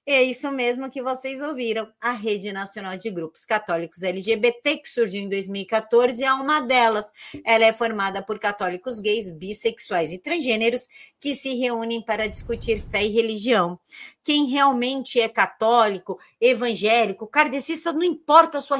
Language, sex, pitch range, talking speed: Portuguese, female, 195-255 Hz, 150 wpm